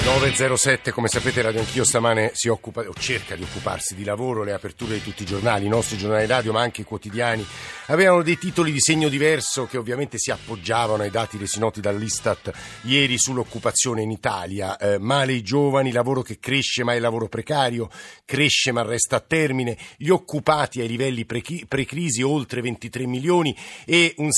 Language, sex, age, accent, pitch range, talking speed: Italian, male, 50-69, native, 110-135 Hz, 180 wpm